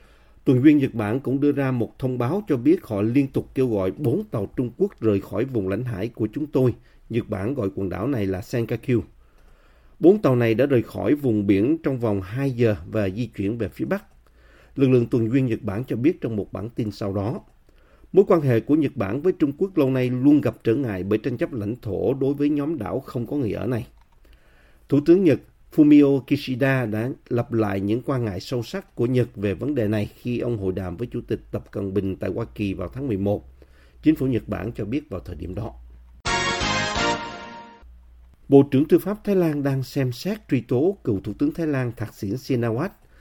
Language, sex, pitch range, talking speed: Vietnamese, male, 105-135 Hz, 225 wpm